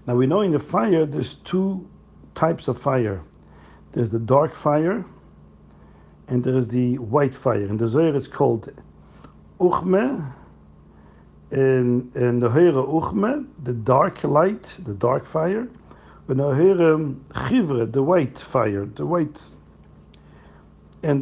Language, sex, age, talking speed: English, male, 60-79, 135 wpm